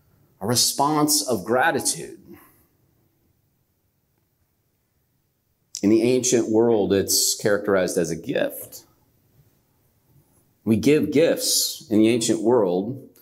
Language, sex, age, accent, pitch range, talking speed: English, male, 40-59, American, 110-150 Hz, 90 wpm